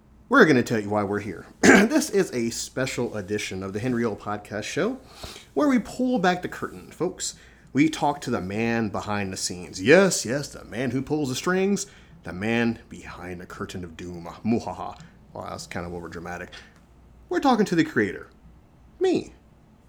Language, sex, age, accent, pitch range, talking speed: English, male, 30-49, American, 100-160 Hz, 185 wpm